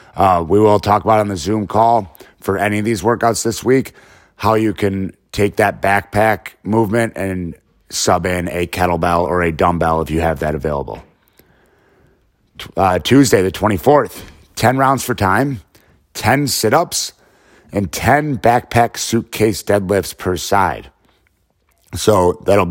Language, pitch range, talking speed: English, 90-110 Hz, 145 wpm